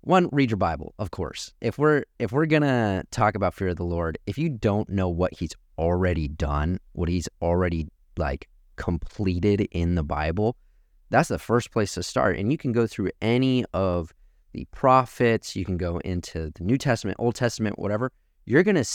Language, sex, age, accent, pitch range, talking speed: English, male, 30-49, American, 80-105 Hz, 185 wpm